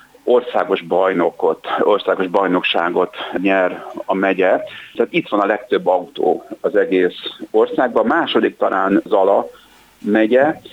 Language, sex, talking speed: Hungarian, male, 110 wpm